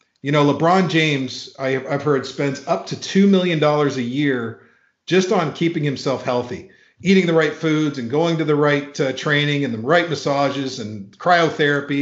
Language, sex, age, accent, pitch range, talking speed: English, male, 50-69, American, 135-180 Hz, 175 wpm